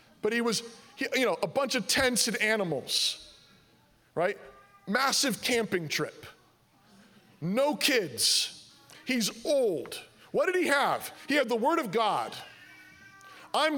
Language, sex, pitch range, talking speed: English, male, 175-260 Hz, 130 wpm